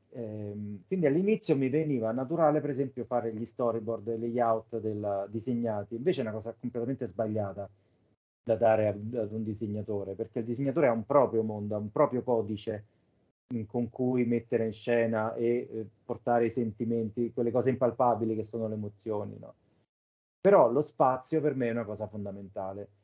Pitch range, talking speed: 110-130 Hz, 165 wpm